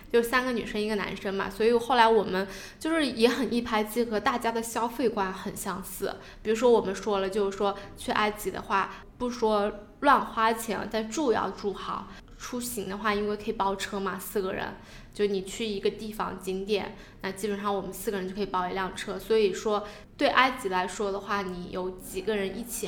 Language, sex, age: Chinese, female, 10-29